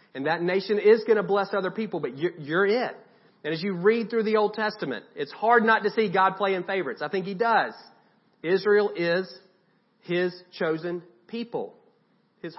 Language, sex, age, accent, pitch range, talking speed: English, male, 40-59, American, 175-210 Hz, 185 wpm